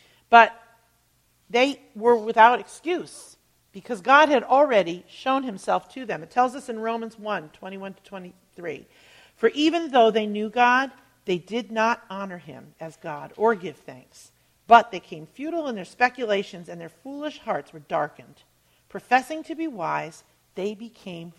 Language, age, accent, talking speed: English, 50-69, American, 160 wpm